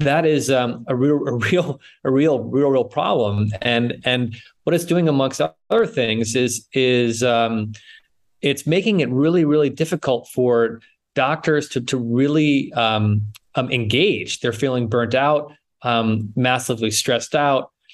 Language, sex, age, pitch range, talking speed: English, male, 30-49, 115-140 Hz, 150 wpm